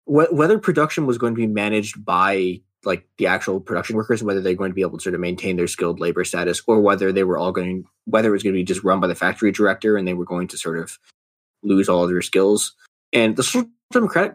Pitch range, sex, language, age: 95-130 Hz, male, English, 20-39